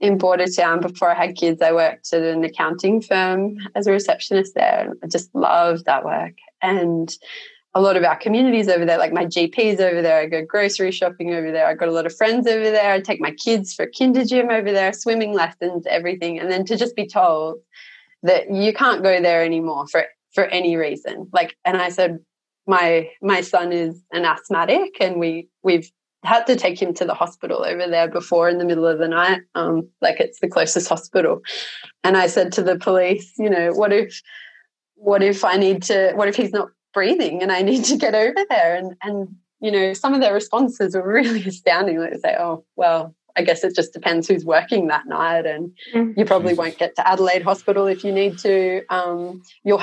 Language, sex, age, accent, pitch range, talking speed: English, female, 20-39, Australian, 175-205 Hz, 215 wpm